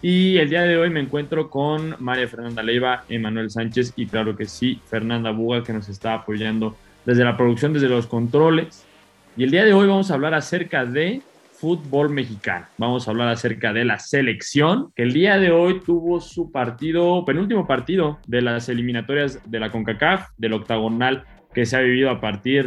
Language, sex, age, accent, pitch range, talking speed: Spanish, male, 20-39, Mexican, 115-150 Hz, 190 wpm